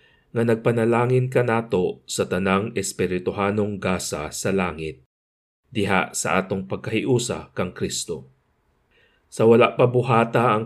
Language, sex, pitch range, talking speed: Filipino, male, 95-110 Hz, 115 wpm